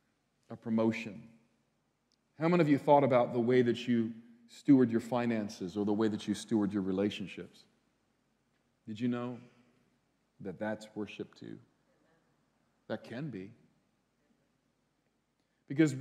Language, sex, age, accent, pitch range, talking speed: English, male, 40-59, American, 130-180 Hz, 125 wpm